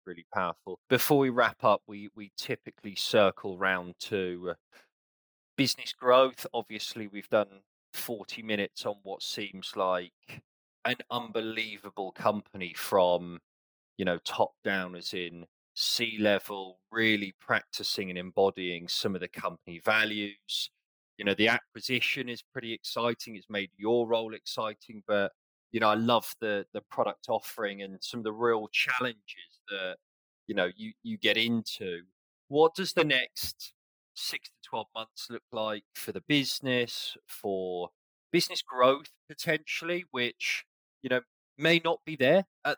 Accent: British